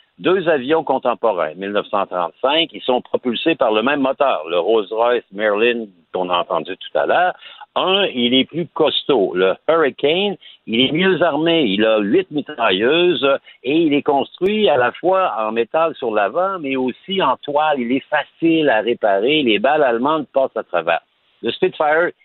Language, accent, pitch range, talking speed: French, French, 115-165 Hz, 170 wpm